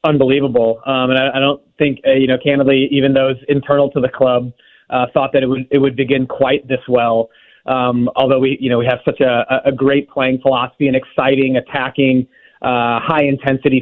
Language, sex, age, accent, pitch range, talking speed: English, male, 30-49, American, 130-145 Hz, 205 wpm